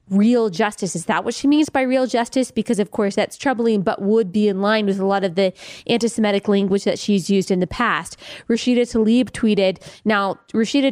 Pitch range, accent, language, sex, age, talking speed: 200-235 Hz, American, English, female, 20-39, 210 wpm